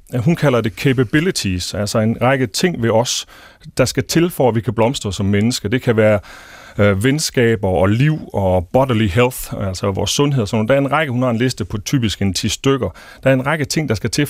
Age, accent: 30-49, native